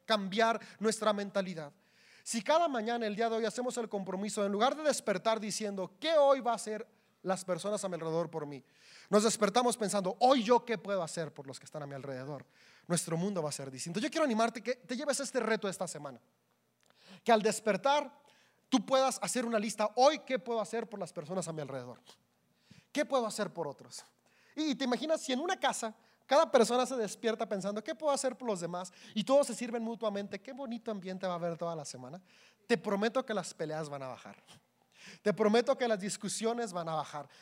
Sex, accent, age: male, Mexican, 30-49